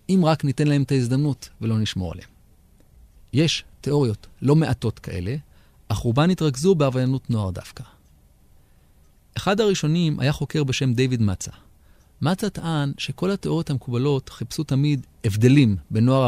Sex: male